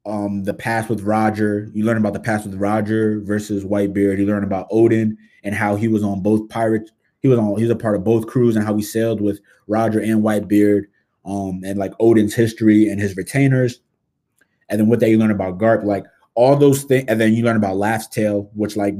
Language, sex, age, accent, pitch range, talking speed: English, male, 20-39, American, 100-110 Hz, 225 wpm